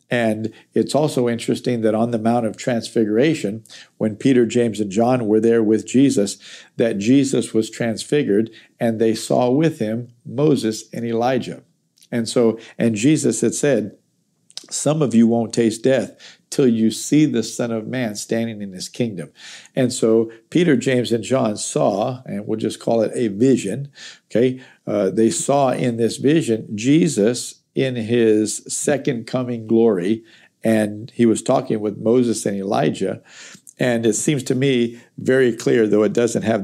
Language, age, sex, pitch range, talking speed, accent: English, 50-69, male, 110-125 Hz, 165 wpm, American